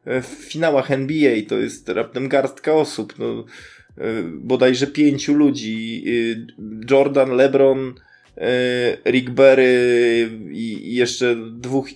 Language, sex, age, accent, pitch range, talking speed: Polish, male, 20-39, native, 125-145 Hz, 95 wpm